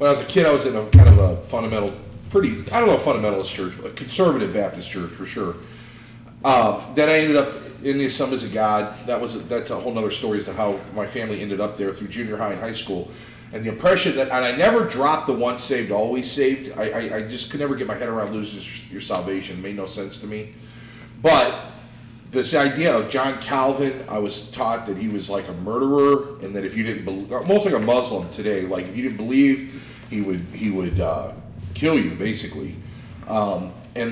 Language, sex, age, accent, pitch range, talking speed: English, male, 40-59, American, 105-135 Hz, 230 wpm